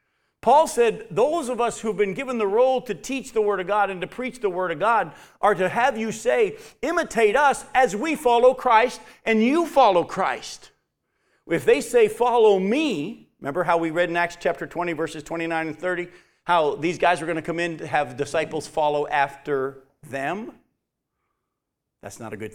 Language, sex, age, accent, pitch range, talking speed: English, male, 50-69, American, 130-210 Hz, 195 wpm